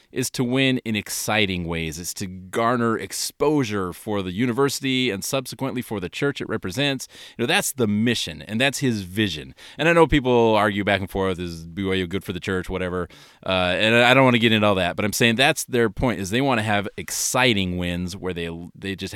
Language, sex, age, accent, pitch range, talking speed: English, male, 30-49, American, 100-130 Hz, 220 wpm